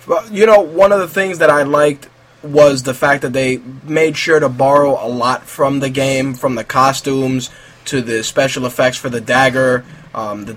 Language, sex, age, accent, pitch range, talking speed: English, male, 20-39, American, 125-140 Hz, 200 wpm